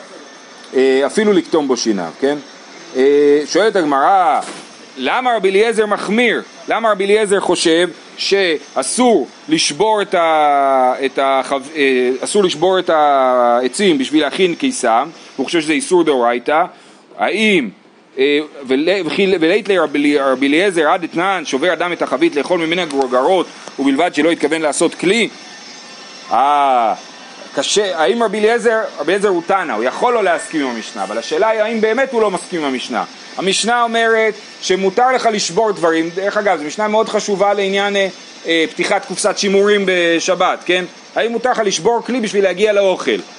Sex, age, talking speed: male, 40-59, 135 wpm